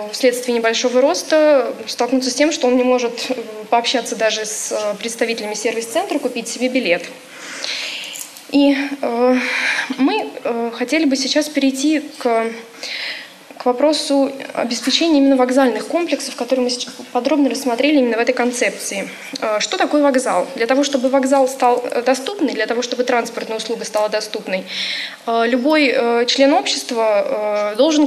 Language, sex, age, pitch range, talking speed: Russian, female, 20-39, 230-275 Hz, 125 wpm